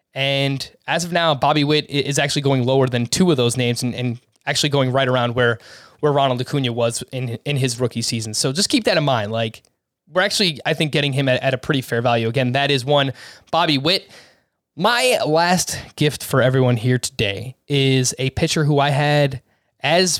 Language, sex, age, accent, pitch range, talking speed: English, male, 20-39, American, 130-160 Hz, 210 wpm